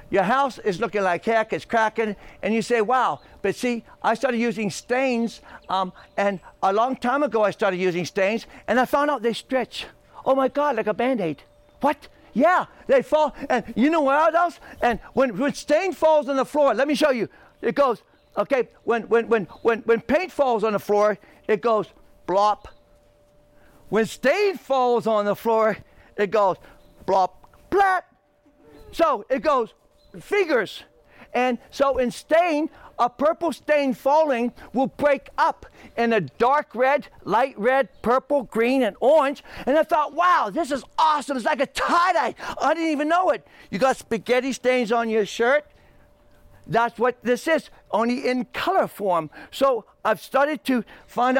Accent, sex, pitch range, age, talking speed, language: American, male, 220-285 Hz, 60-79, 170 wpm, English